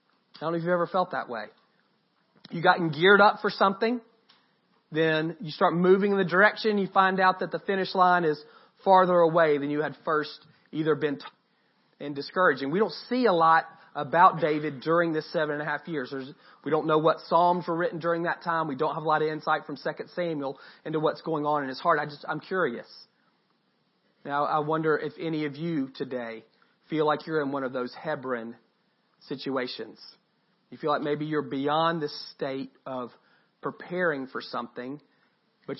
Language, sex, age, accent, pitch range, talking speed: English, male, 40-59, American, 140-170 Hz, 195 wpm